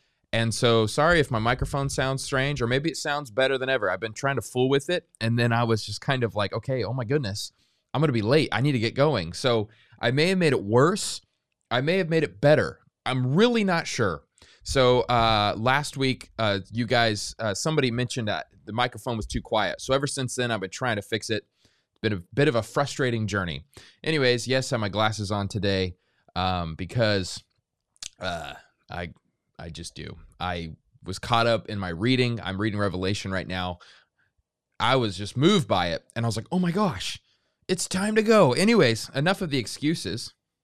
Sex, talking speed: male, 215 wpm